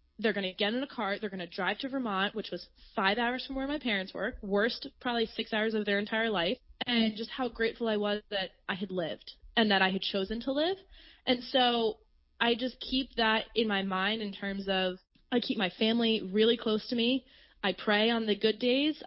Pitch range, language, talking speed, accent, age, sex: 195-235 Hz, English, 225 wpm, American, 20-39, female